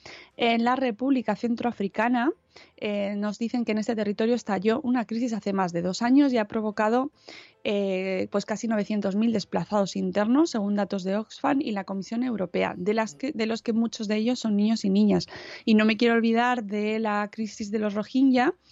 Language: Spanish